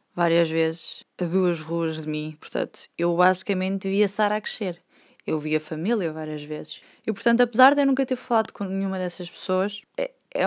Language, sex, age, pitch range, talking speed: Portuguese, female, 20-39, 165-205 Hz, 190 wpm